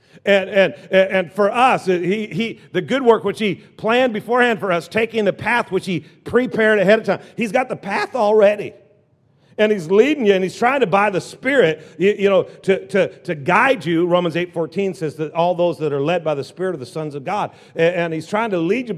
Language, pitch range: English, 175-230 Hz